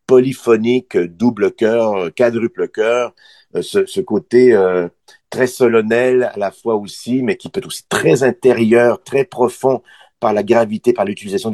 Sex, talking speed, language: male, 140 wpm, French